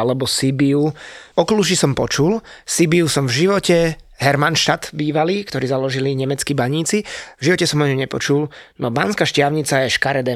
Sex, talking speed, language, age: male, 145 wpm, Slovak, 20-39